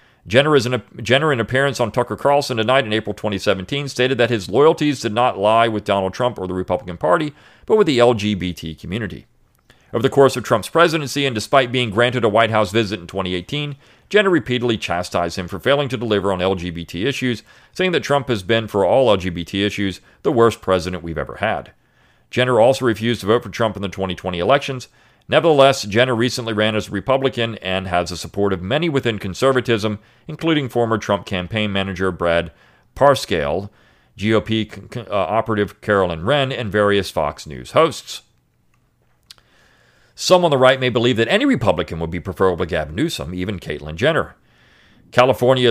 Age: 40-59